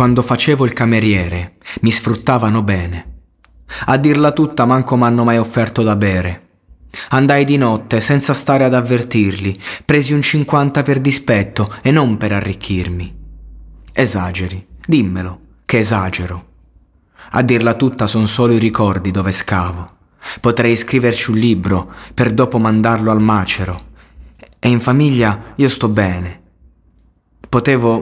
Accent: native